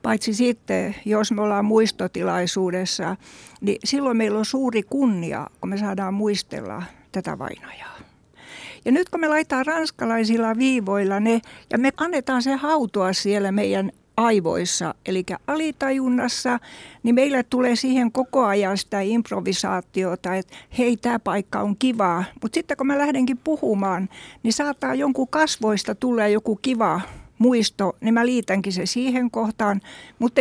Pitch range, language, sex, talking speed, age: 200-260 Hz, Finnish, female, 140 wpm, 60-79